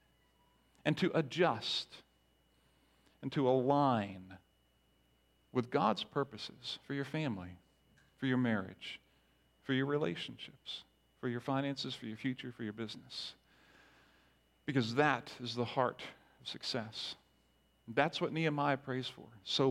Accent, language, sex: American, English, male